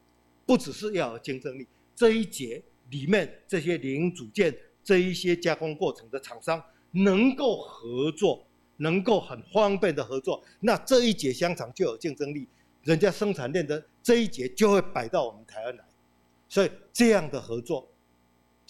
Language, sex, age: Chinese, male, 50-69